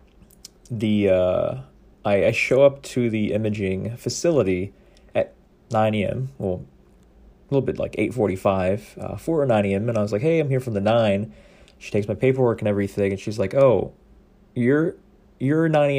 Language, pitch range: English, 105-145 Hz